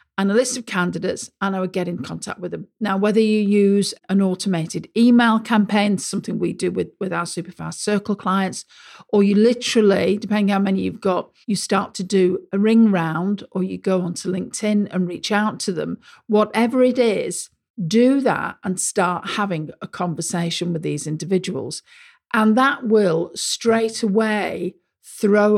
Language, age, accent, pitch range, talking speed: English, 50-69, British, 185-230 Hz, 175 wpm